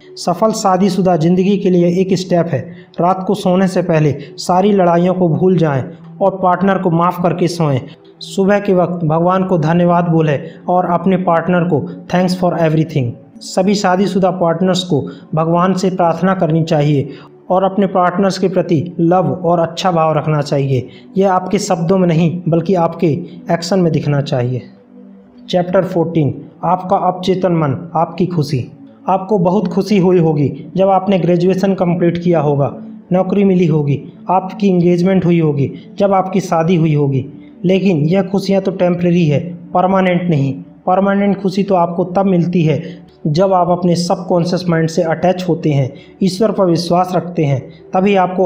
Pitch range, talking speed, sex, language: 160-190 Hz, 165 wpm, male, Hindi